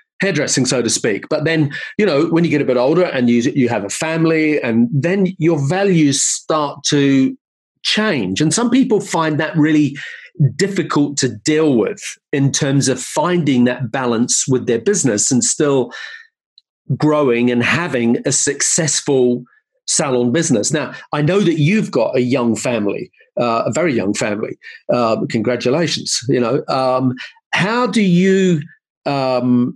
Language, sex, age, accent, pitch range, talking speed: English, male, 40-59, British, 125-165 Hz, 155 wpm